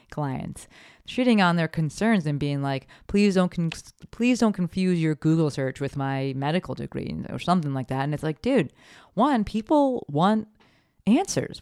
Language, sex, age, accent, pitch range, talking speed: English, female, 30-49, American, 140-200 Hz, 165 wpm